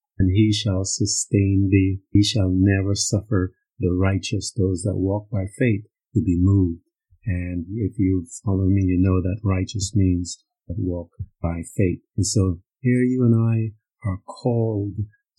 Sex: male